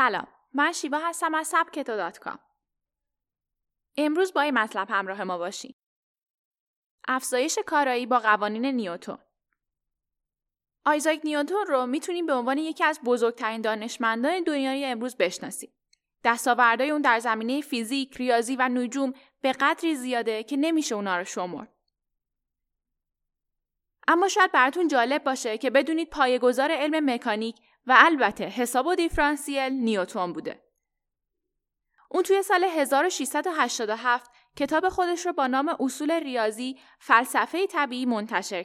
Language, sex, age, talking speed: Persian, female, 10-29, 120 wpm